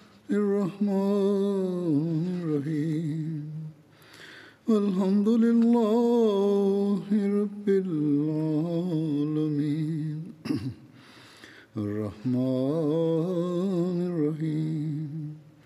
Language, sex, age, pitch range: English, male, 60-79, 145-180 Hz